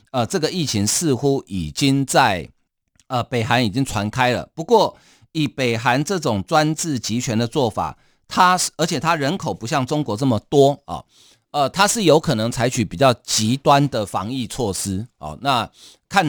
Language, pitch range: Chinese, 110-150 Hz